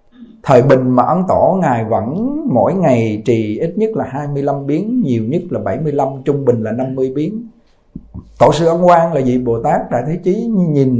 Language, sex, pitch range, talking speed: Vietnamese, male, 110-150 Hz, 195 wpm